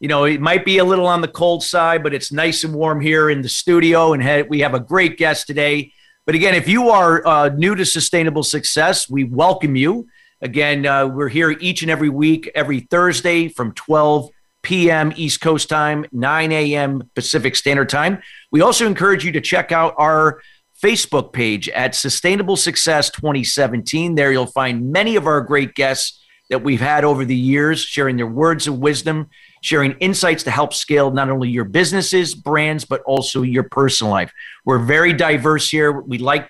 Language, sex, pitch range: English, male, 135-165 Hz